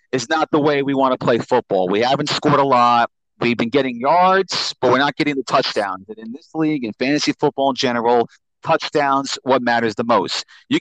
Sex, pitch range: male, 125-155 Hz